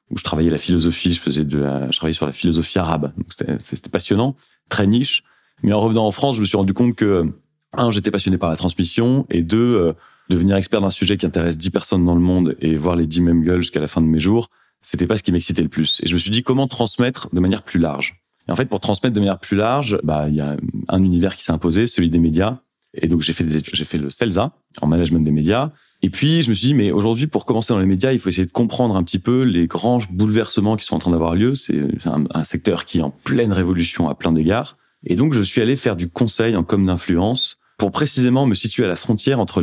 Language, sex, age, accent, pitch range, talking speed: French, male, 30-49, French, 85-115 Hz, 270 wpm